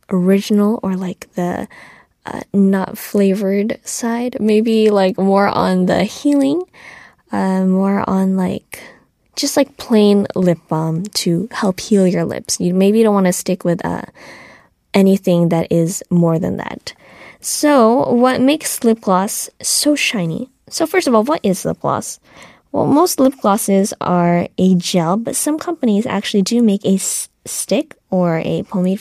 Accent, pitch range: American, 185-240 Hz